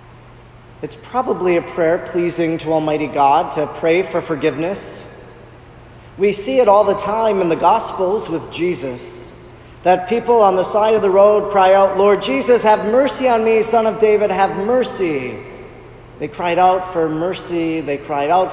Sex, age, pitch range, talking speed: male, 40-59, 155-195 Hz, 170 wpm